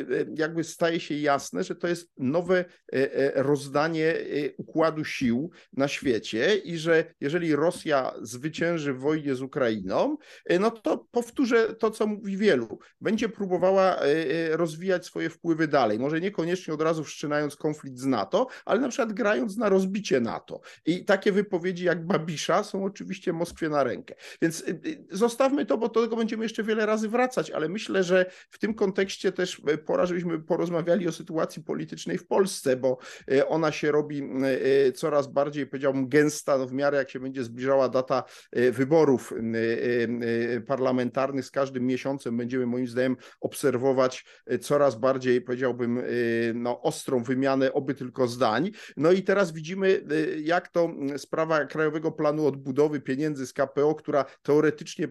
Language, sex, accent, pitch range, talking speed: Polish, male, native, 135-180 Hz, 145 wpm